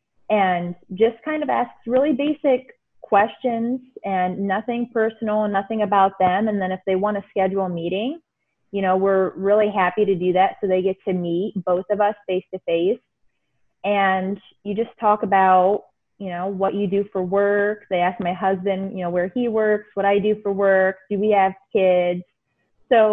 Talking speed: 190 wpm